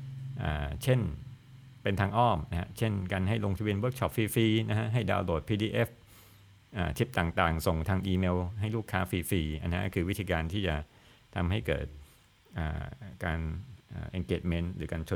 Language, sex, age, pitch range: Thai, male, 60-79, 80-105 Hz